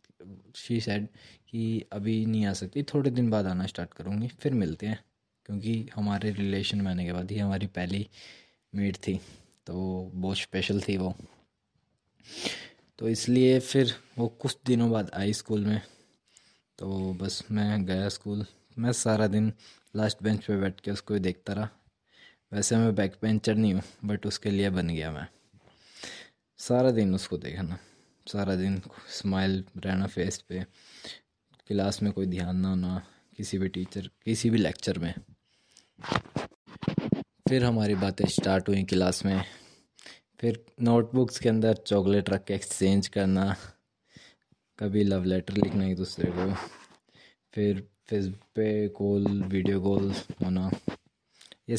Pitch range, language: 95-110 Hz, Hindi